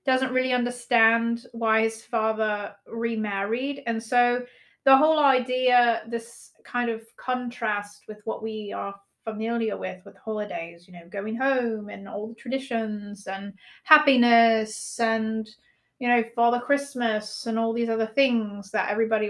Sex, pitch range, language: female, 215-245 Hz, English